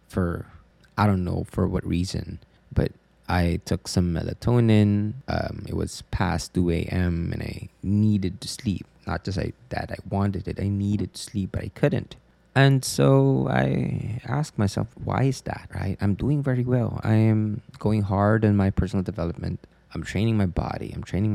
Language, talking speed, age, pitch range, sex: English, 180 wpm, 20-39, 95-110 Hz, male